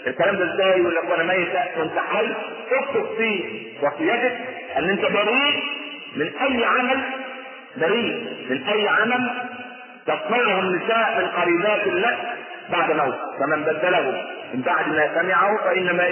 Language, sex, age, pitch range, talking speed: Arabic, male, 40-59, 150-190 Hz, 130 wpm